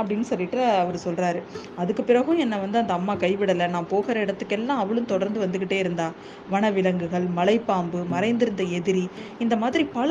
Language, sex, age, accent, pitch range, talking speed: Tamil, female, 20-39, native, 190-255 Hz, 155 wpm